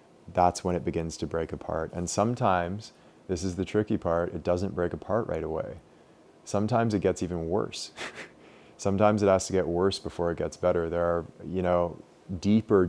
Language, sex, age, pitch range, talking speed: English, male, 30-49, 85-95 Hz, 185 wpm